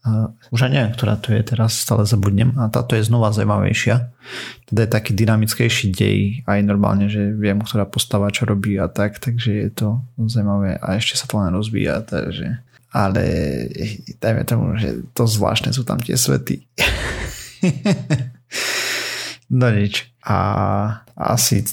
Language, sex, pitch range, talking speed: Slovak, male, 100-120 Hz, 145 wpm